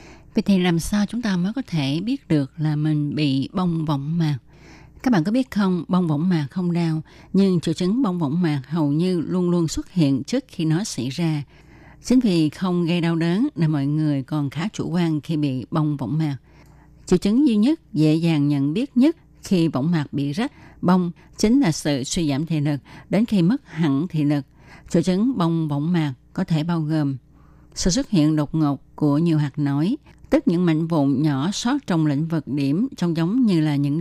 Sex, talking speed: female, 215 wpm